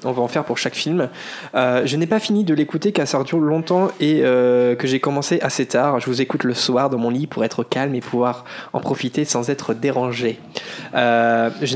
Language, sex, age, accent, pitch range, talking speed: French, male, 20-39, French, 125-155 Hz, 225 wpm